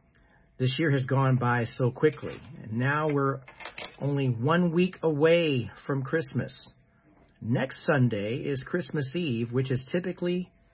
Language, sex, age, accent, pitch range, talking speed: English, male, 50-69, American, 120-160 Hz, 135 wpm